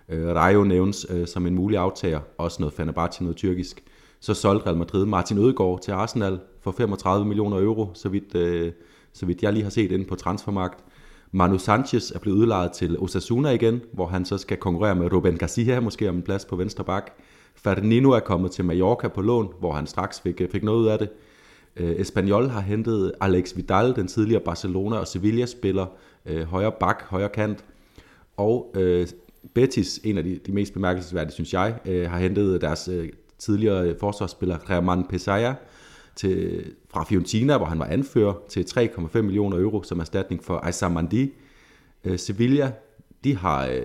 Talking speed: 180 wpm